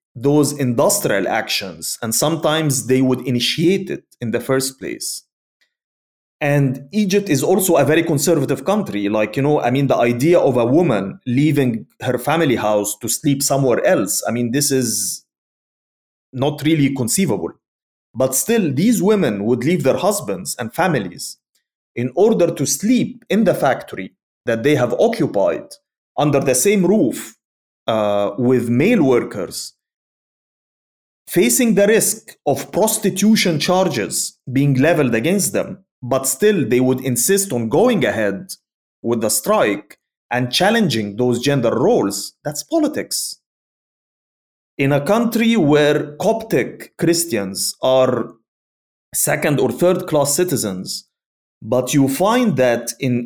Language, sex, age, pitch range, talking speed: English, male, 30-49, 125-180 Hz, 135 wpm